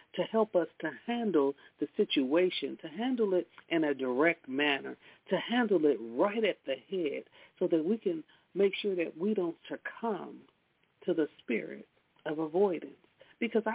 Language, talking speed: English, 160 wpm